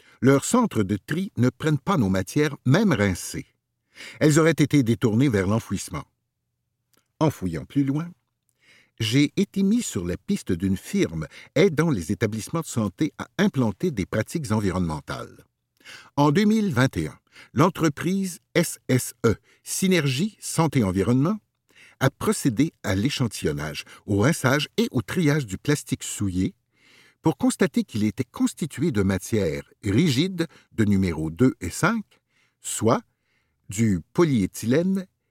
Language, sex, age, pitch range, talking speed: French, male, 60-79, 110-170 Hz, 125 wpm